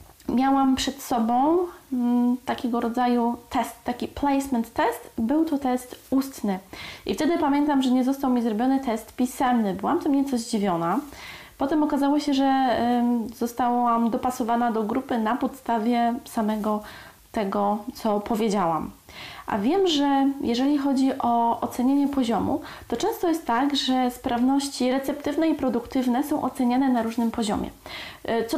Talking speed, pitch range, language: 135 wpm, 235-285 Hz, Polish